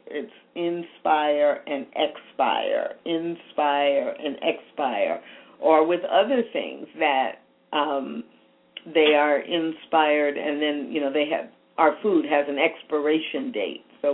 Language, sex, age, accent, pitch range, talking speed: English, female, 50-69, American, 150-205 Hz, 125 wpm